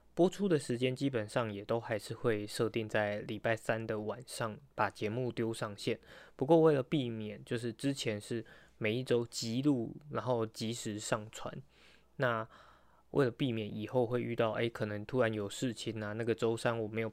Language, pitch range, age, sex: Chinese, 110-125 Hz, 20-39, male